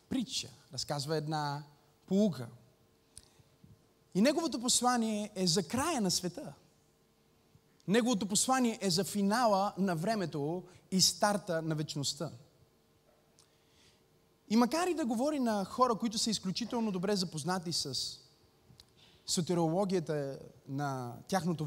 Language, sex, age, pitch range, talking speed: Bulgarian, male, 30-49, 160-245 Hz, 110 wpm